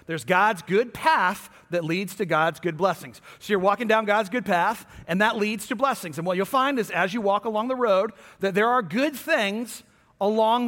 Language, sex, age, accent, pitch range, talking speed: English, male, 40-59, American, 170-230 Hz, 220 wpm